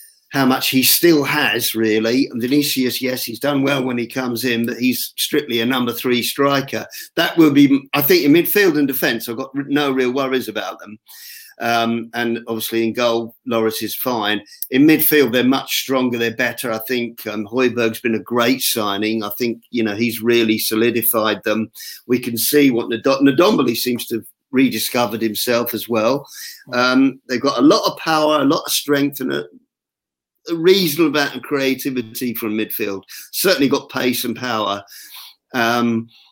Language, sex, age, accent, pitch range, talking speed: English, male, 50-69, British, 115-140 Hz, 175 wpm